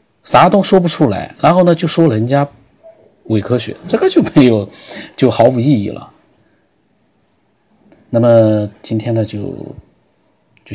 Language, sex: Chinese, male